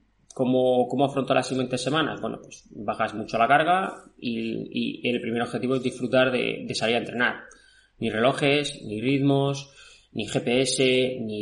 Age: 20-39